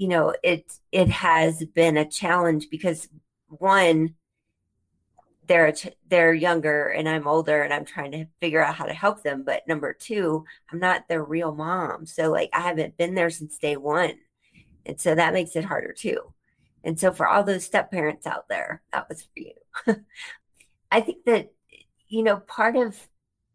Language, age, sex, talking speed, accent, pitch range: English, 40-59, female, 180 wpm, American, 160-200 Hz